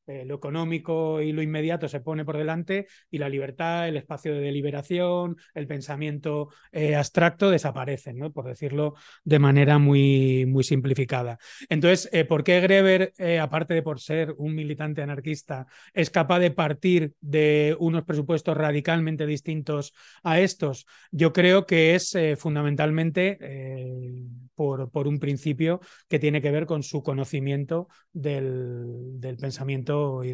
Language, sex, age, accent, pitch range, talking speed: Spanish, male, 30-49, Spanish, 135-165 Hz, 150 wpm